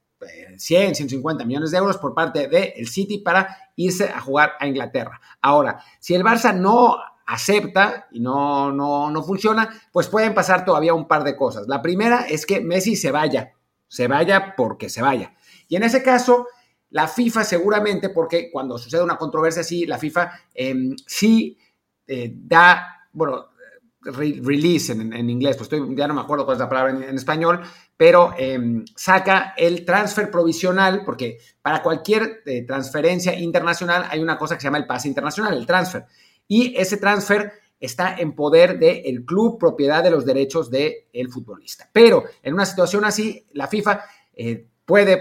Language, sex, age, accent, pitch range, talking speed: Spanish, male, 50-69, Mexican, 155-210 Hz, 175 wpm